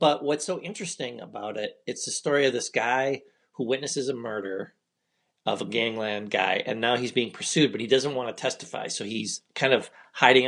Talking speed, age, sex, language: 205 wpm, 40-59, male, English